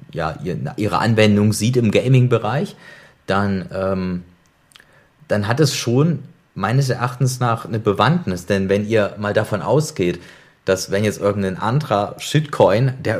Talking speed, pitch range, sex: 125 wpm, 100-125 Hz, male